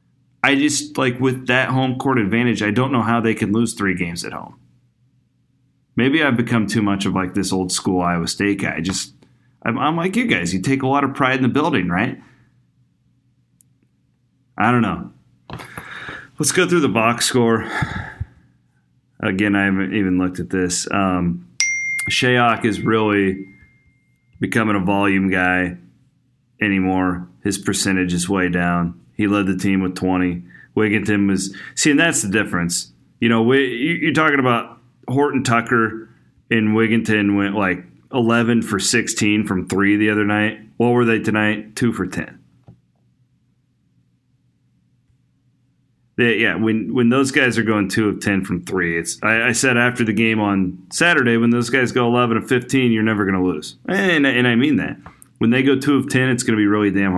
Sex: male